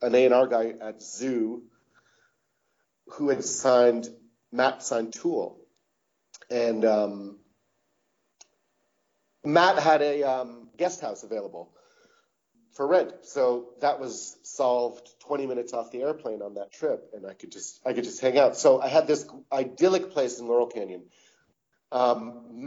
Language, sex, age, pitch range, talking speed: English, male, 40-59, 115-150 Hz, 140 wpm